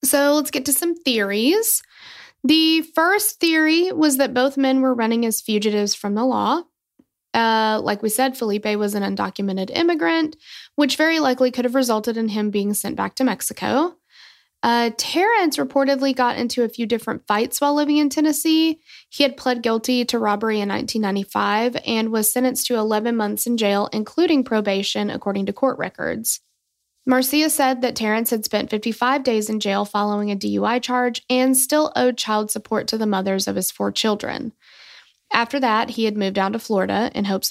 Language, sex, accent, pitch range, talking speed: English, female, American, 210-275 Hz, 180 wpm